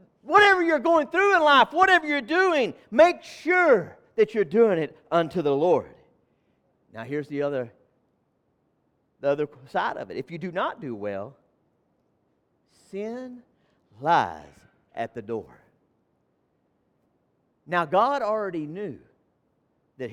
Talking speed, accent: 125 wpm, American